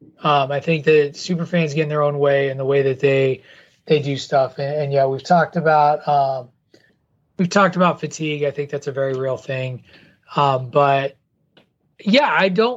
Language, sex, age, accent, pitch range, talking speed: English, male, 20-39, American, 140-170 Hz, 190 wpm